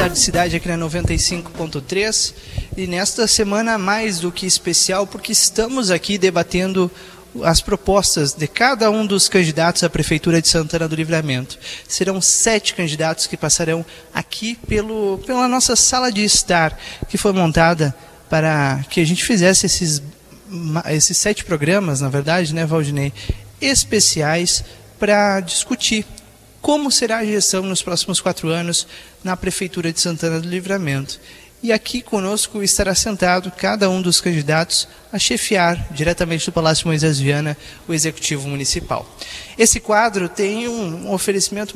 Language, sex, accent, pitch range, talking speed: Portuguese, male, Brazilian, 165-200 Hz, 140 wpm